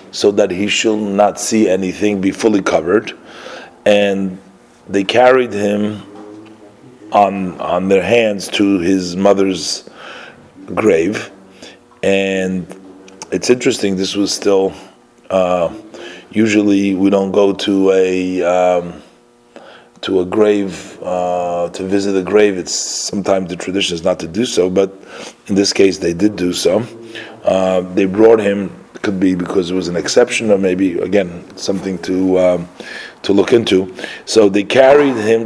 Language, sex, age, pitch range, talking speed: English, male, 30-49, 95-105 Hz, 140 wpm